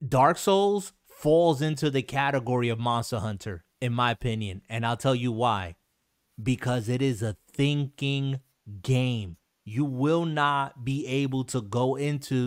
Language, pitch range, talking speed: English, 120-145 Hz, 150 wpm